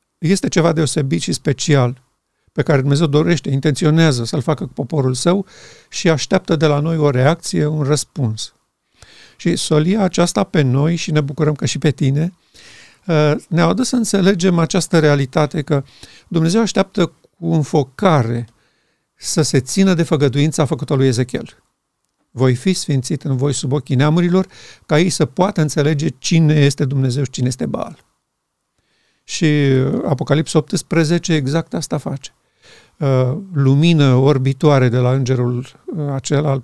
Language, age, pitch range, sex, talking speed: Romanian, 50-69, 135-165 Hz, male, 140 wpm